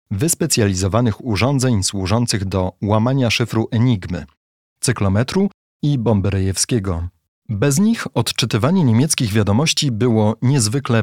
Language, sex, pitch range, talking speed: Polish, male, 95-125 Hz, 90 wpm